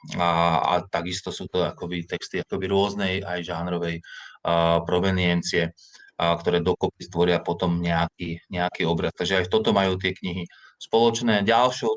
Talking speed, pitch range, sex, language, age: 145 wpm, 85-95 Hz, male, Slovak, 20-39